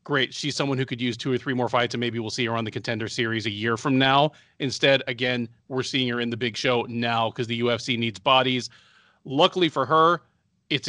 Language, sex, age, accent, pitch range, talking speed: English, male, 30-49, American, 115-140 Hz, 235 wpm